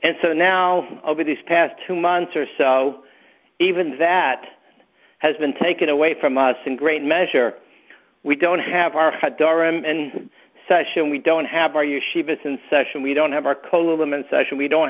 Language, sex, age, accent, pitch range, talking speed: English, male, 60-79, American, 145-170 Hz, 175 wpm